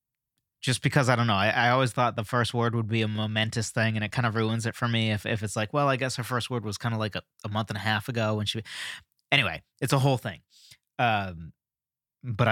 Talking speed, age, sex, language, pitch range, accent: 265 wpm, 20-39, male, English, 105-135 Hz, American